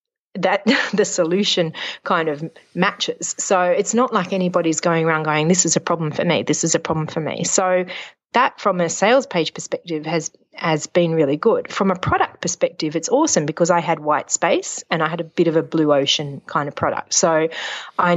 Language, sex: English, female